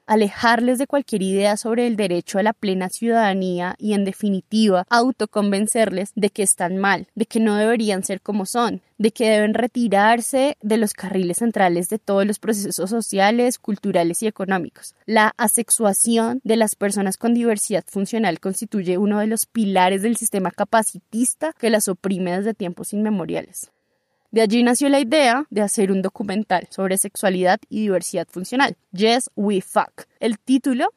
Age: 20-39